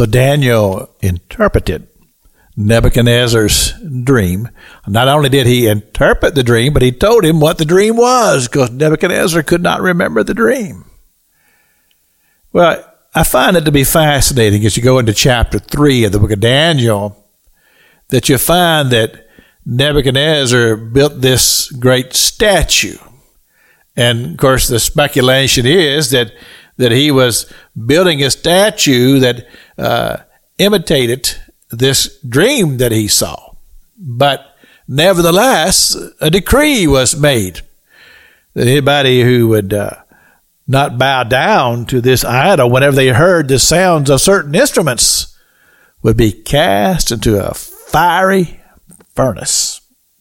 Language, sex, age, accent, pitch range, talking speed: English, male, 50-69, American, 115-150 Hz, 130 wpm